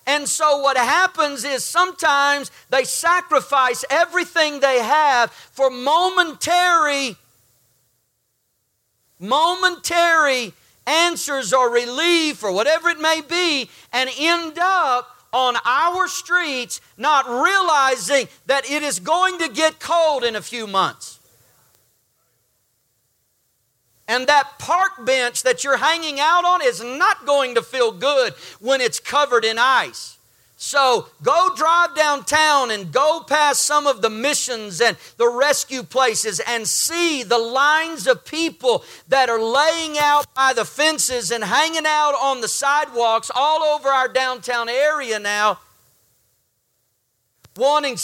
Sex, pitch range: male, 235-310 Hz